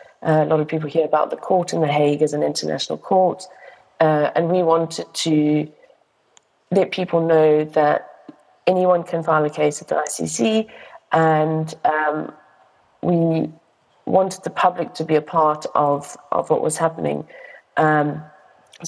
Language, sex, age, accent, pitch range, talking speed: English, female, 30-49, British, 150-175 Hz, 155 wpm